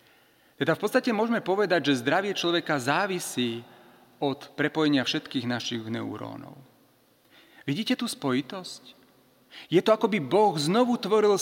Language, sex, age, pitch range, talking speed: Slovak, male, 40-59, 130-185 Hz, 125 wpm